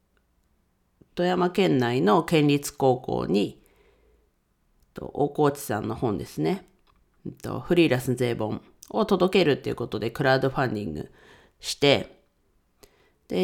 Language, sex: Japanese, female